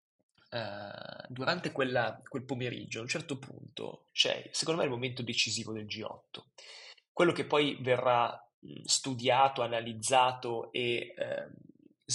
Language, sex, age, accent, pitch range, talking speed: Italian, male, 20-39, native, 120-145 Hz, 130 wpm